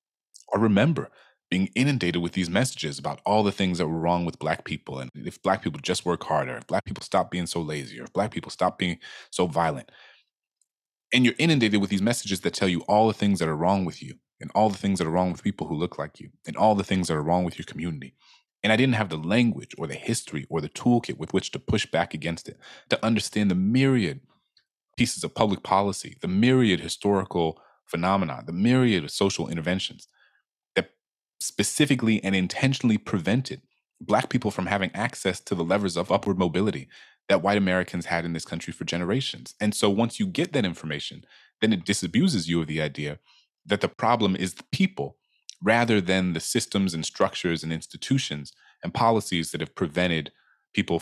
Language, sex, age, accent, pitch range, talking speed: English, male, 30-49, American, 85-115 Hz, 205 wpm